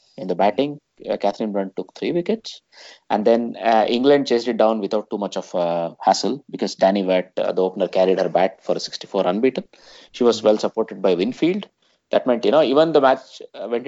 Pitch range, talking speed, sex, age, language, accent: 95-125 Hz, 210 wpm, male, 20-39, English, Indian